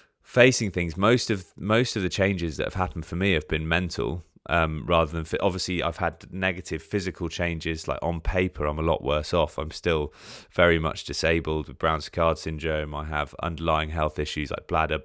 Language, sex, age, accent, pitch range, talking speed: English, male, 20-39, British, 80-90 Hz, 195 wpm